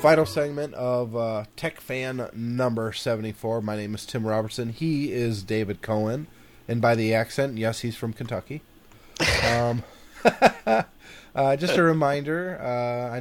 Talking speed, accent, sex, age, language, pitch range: 145 wpm, American, male, 30-49, English, 115-150 Hz